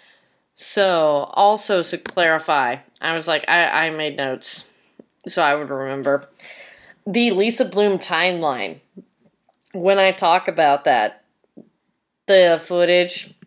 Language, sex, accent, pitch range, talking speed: English, female, American, 150-185 Hz, 115 wpm